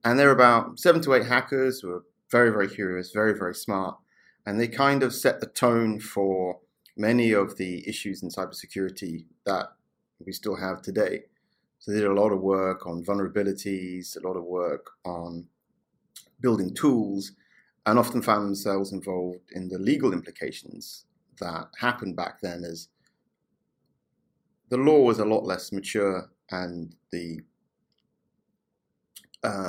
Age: 30-49